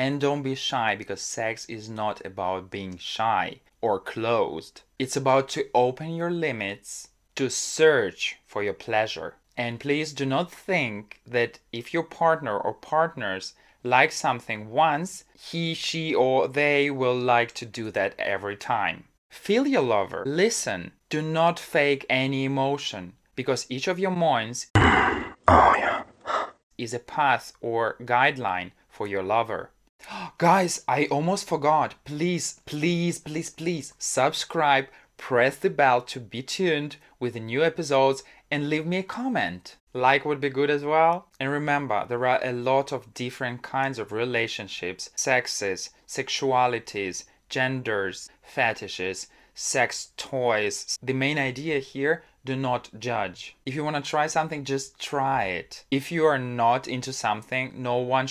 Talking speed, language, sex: 145 wpm, English, male